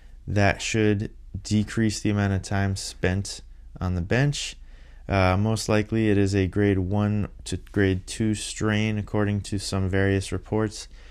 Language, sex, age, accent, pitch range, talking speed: English, male, 20-39, American, 90-105 Hz, 150 wpm